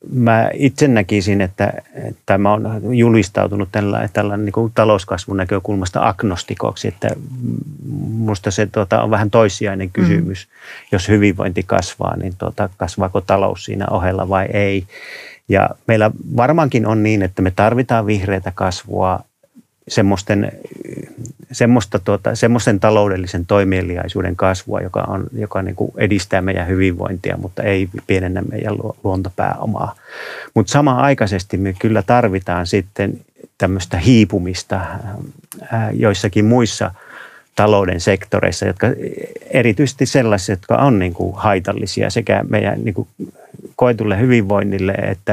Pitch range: 95-115 Hz